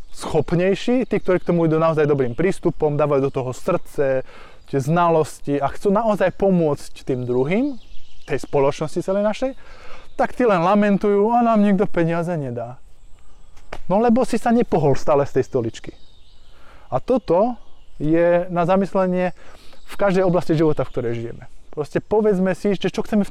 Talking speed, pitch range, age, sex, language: 155 wpm, 135-205 Hz, 20-39, male, Slovak